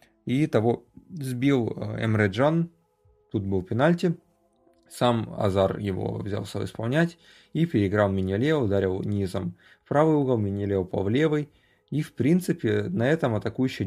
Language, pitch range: Russian, 100-130 Hz